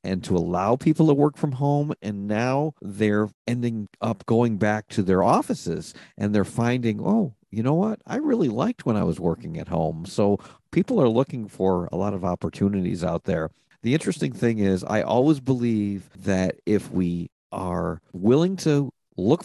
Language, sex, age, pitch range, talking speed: English, male, 50-69, 95-120 Hz, 180 wpm